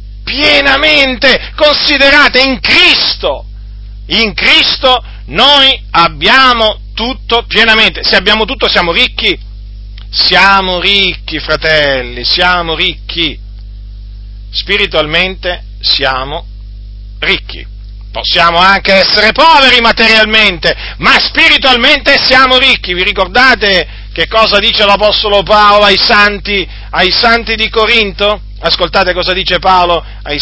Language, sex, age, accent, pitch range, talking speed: Italian, male, 40-59, native, 150-225 Hz, 100 wpm